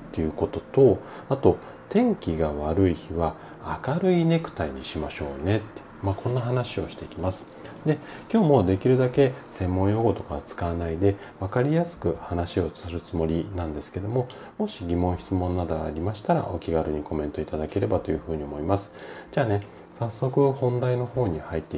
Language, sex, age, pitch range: Japanese, male, 40-59, 80-125 Hz